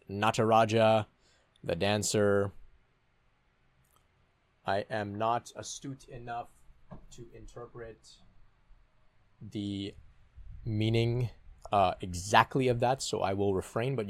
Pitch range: 90-120 Hz